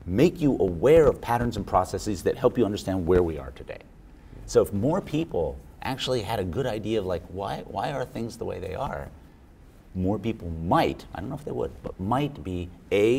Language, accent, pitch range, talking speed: English, American, 90-115 Hz, 215 wpm